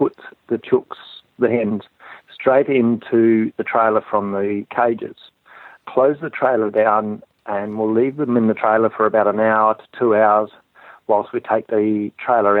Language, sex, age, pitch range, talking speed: English, male, 40-59, 105-120 Hz, 165 wpm